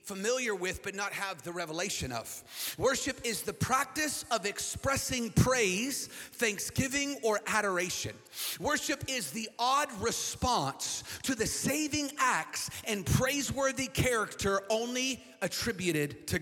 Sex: male